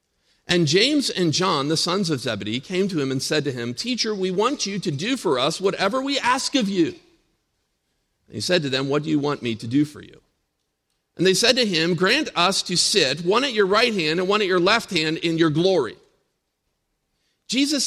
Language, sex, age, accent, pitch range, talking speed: English, male, 50-69, American, 145-210 Hz, 220 wpm